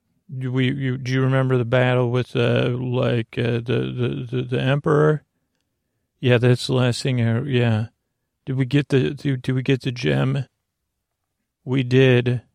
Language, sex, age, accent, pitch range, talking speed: English, male, 40-59, American, 120-130 Hz, 165 wpm